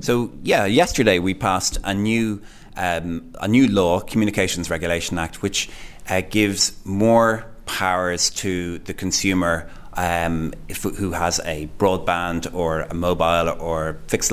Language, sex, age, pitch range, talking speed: English, male, 30-49, 85-100 Hz, 140 wpm